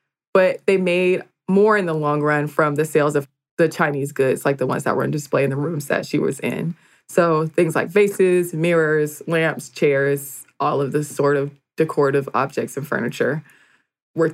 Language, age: English, 20-39